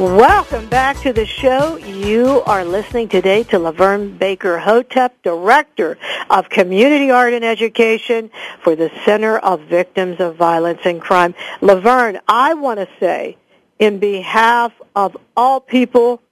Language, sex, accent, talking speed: English, female, American, 135 wpm